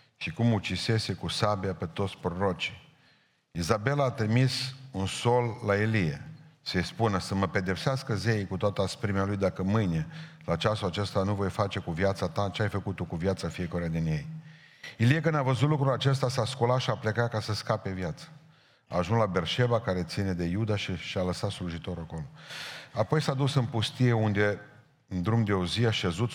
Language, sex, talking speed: Romanian, male, 200 wpm